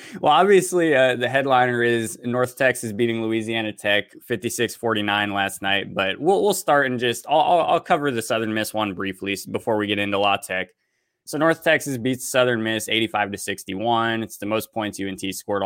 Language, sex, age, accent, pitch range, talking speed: English, male, 20-39, American, 100-120 Hz, 180 wpm